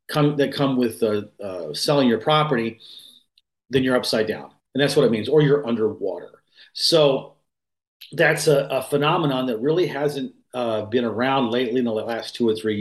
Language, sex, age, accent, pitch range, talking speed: English, male, 40-59, American, 115-145 Hz, 185 wpm